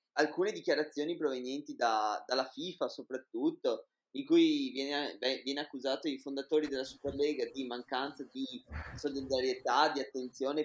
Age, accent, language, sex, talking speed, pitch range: 20-39, native, Italian, male, 130 wpm, 130-160 Hz